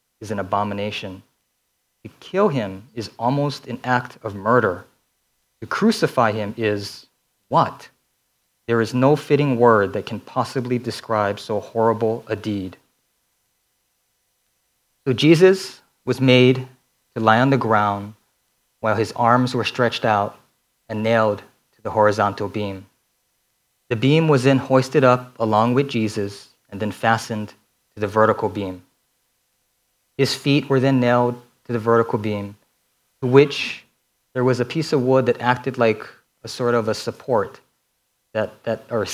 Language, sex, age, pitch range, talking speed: English, male, 30-49, 105-130 Hz, 145 wpm